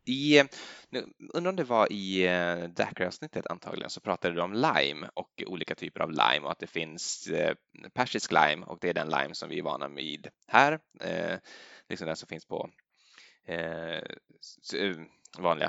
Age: 10-29